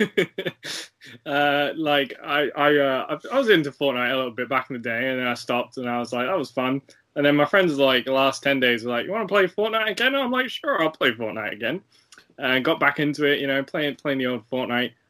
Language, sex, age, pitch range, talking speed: English, male, 10-29, 130-150 Hz, 260 wpm